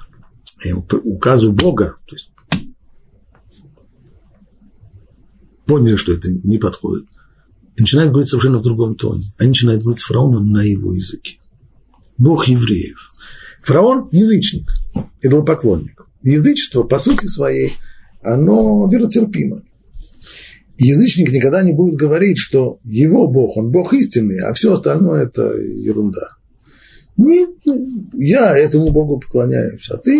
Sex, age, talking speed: male, 50-69, 115 wpm